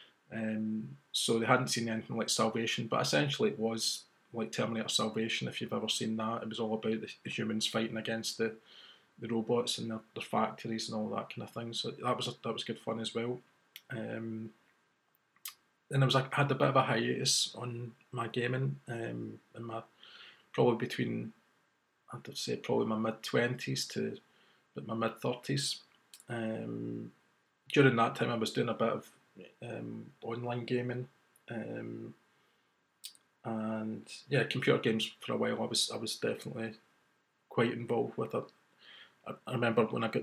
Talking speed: 175 wpm